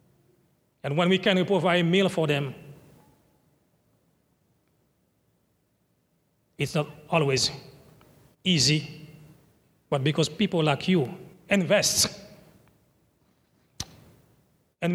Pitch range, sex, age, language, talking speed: 140-175 Hz, male, 40-59, English, 80 wpm